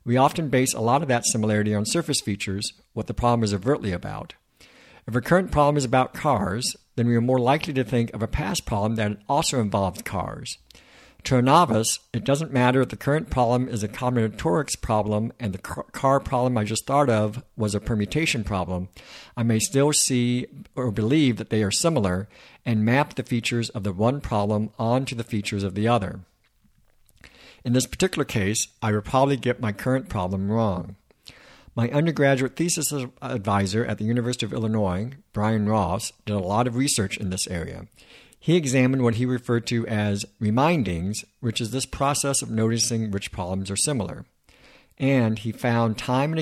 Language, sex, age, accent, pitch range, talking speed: English, male, 60-79, American, 105-130 Hz, 185 wpm